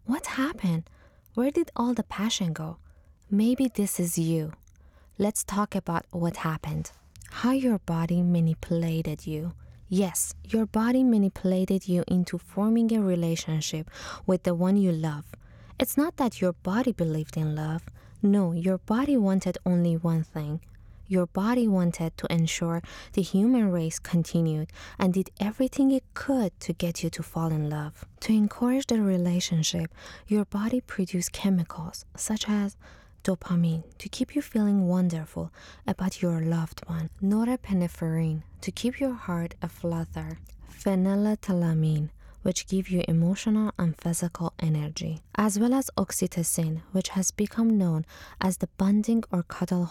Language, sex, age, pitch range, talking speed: English, female, 20-39, 165-205 Hz, 145 wpm